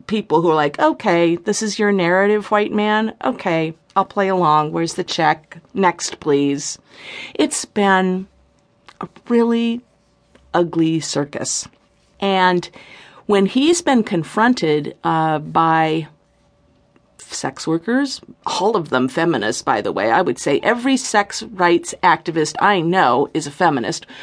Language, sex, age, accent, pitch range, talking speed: English, female, 50-69, American, 165-265 Hz, 135 wpm